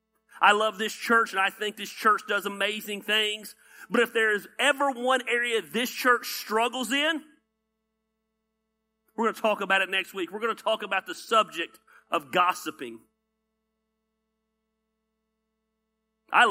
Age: 40-59